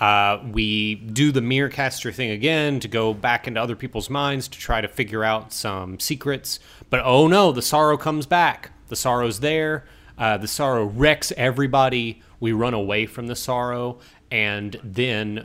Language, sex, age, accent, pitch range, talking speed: English, male, 30-49, American, 95-130 Hz, 175 wpm